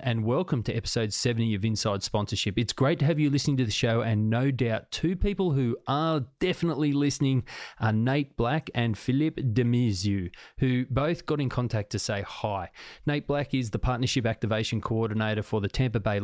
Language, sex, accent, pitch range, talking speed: English, male, Australian, 105-130 Hz, 190 wpm